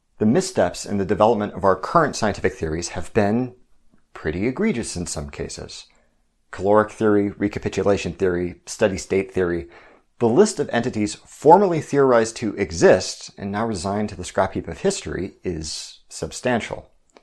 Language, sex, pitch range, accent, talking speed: English, male, 90-115 Hz, American, 150 wpm